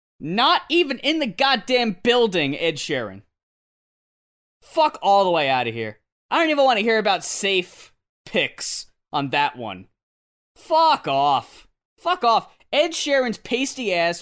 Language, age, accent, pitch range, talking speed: English, 20-39, American, 175-250 Hz, 150 wpm